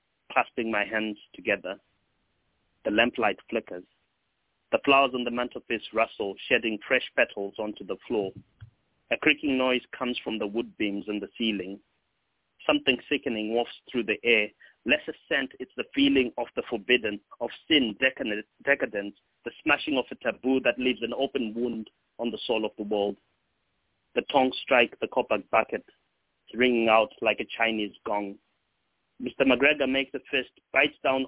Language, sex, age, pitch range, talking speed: English, male, 30-49, 110-135 Hz, 160 wpm